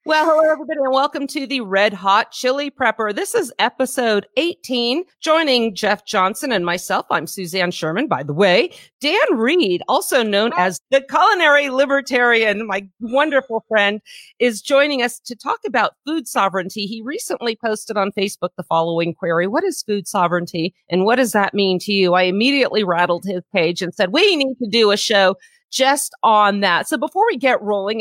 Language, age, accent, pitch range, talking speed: English, 40-59, American, 200-275 Hz, 180 wpm